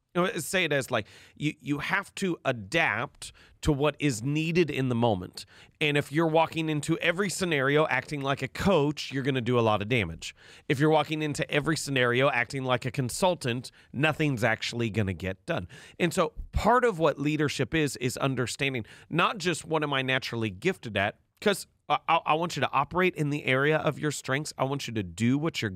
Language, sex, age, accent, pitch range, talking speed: English, male, 30-49, American, 115-155 Hz, 205 wpm